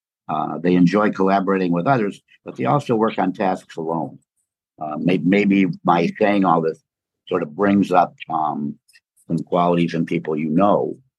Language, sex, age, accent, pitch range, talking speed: English, male, 60-79, American, 85-100 Hz, 165 wpm